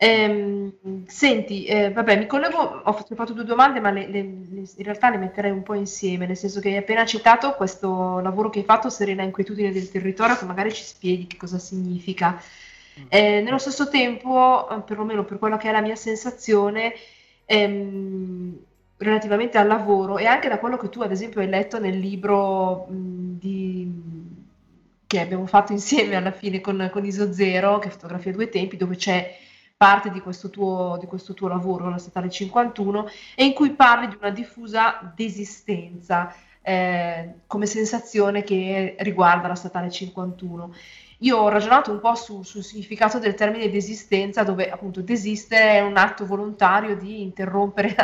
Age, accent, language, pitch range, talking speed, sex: 20-39, native, Italian, 185-215 Hz, 165 wpm, female